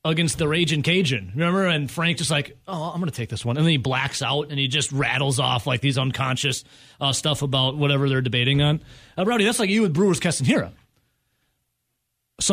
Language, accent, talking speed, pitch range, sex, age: English, American, 220 wpm, 135-195 Hz, male, 30-49